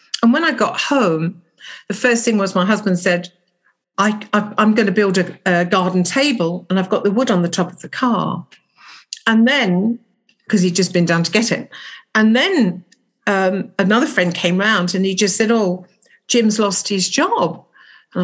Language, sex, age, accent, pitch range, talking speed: English, female, 50-69, British, 180-255 Hz, 190 wpm